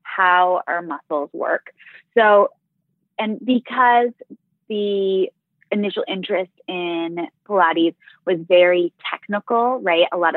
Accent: American